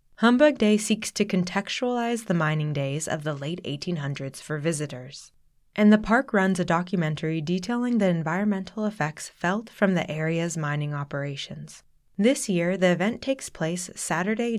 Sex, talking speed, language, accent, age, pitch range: female, 150 wpm, English, American, 20-39, 160-215 Hz